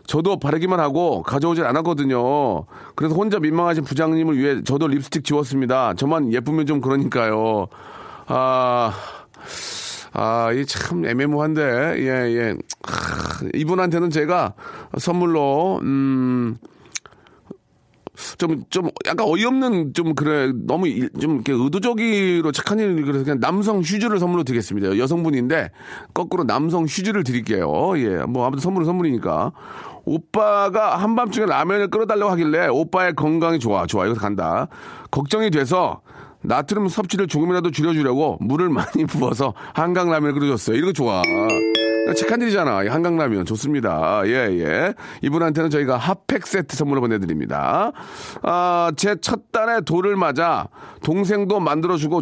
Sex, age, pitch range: male, 40-59, 130-180 Hz